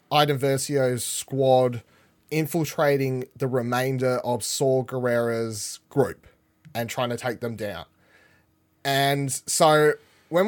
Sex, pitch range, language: male, 135-190 Hz, English